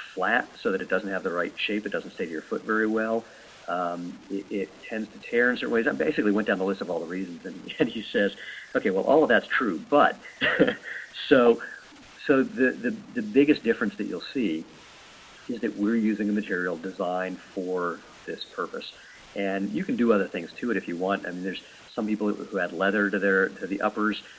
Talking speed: 225 wpm